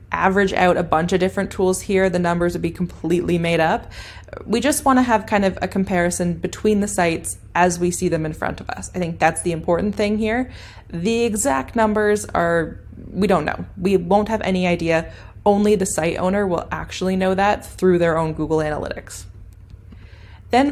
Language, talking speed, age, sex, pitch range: English, 195 wpm, 20-39, female, 170-210 Hz